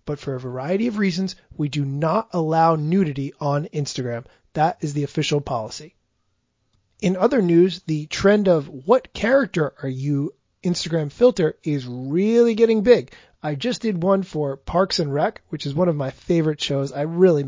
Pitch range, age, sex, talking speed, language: 145-185 Hz, 30-49, male, 175 wpm, English